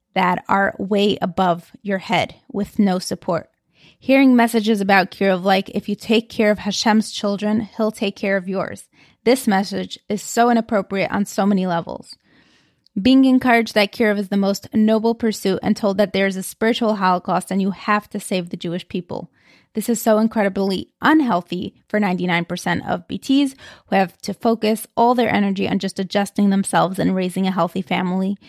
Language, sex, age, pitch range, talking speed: English, female, 20-39, 195-225 Hz, 180 wpm